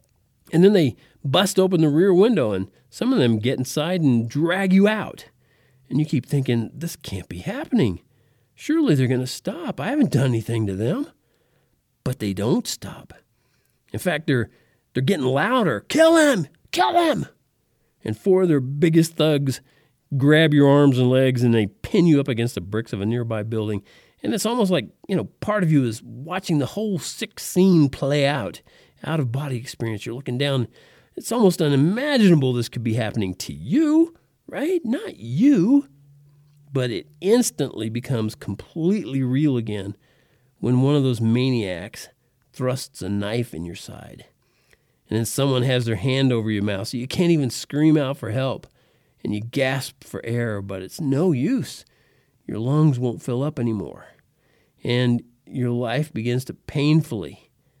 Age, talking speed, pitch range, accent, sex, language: 40-59, 170 wpm, 120-155 Hz, American, male, English